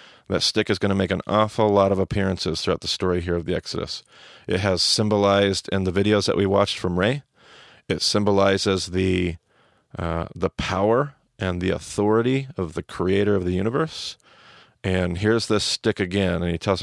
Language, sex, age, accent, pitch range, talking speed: English, male, 40-59, American, 95-105 Hz, 185 wpm